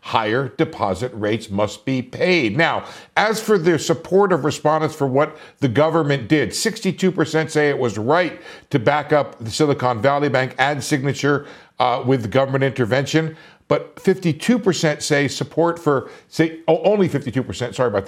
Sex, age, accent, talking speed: male, 50-69, American, 160 wpm